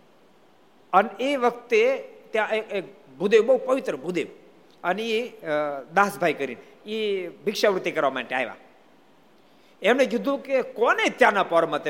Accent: native